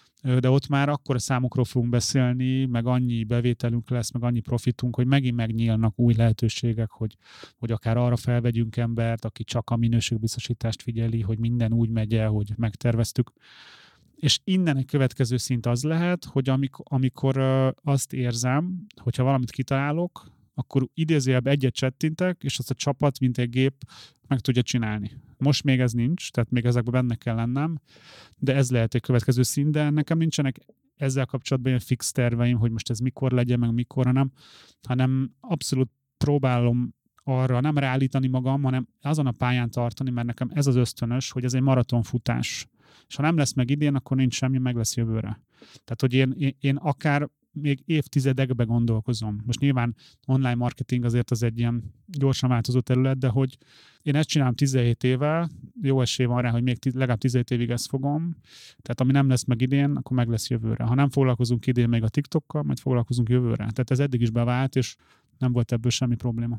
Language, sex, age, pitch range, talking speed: Hungarian, male, 30-49, 120-135 Hz, 185 wpm